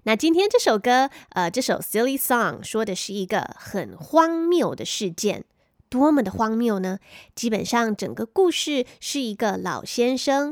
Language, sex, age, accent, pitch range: Chinese, female, 20-39, American, 200-320 Hz